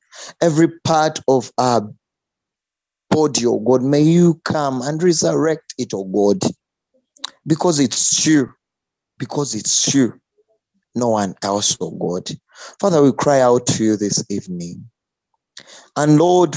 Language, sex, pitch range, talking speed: English, male, 125-160 Hz, 140 wpm